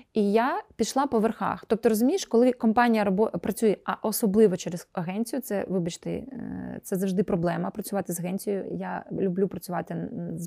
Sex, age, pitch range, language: female, 20-39, 190-240 Hz, Ukrainian